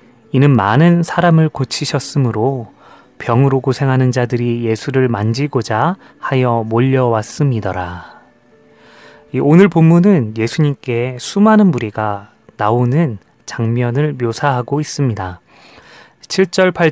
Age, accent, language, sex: 30-49, native, Korean, male